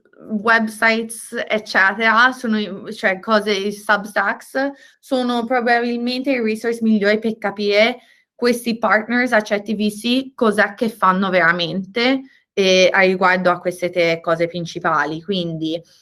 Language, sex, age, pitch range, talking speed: English, female, 20-39, 190-235 Hz, 110 wpm